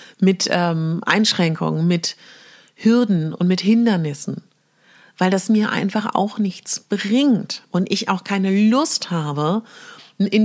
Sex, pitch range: female, 170-210 Hz